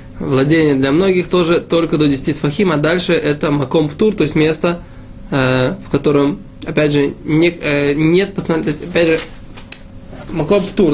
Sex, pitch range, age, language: male, 155-195 Hz, 20-39, Russian